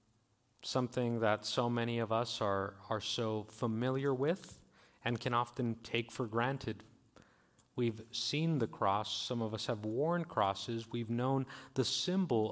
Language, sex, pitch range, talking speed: English, male, 110-135 Hz, 150 wpm